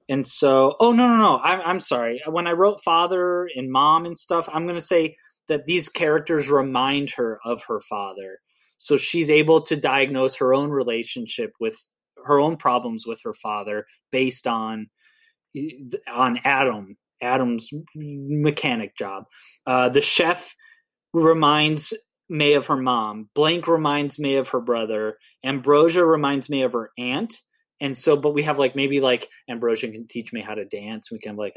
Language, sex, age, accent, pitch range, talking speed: English, male, 30-49, American, 120-155 Hz, 170 wpm